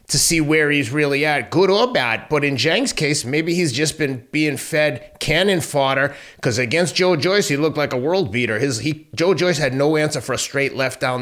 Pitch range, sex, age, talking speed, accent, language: 130-155 Hz, male, 30-49, 230 wpm, American, English